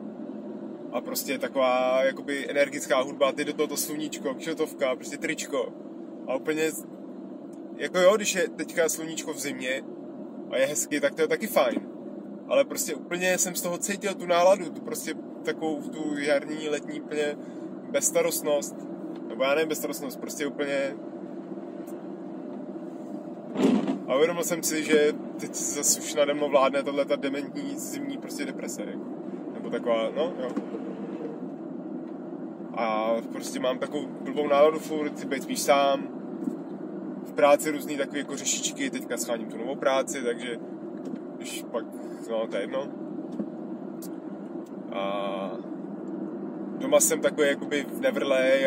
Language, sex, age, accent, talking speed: Czech, male, 20-39, native, 135 wpm